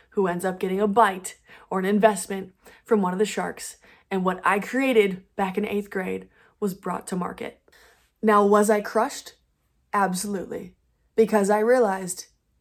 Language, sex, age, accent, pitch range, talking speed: English, female, 20-39, American, 190-230 Hz, 160 wpm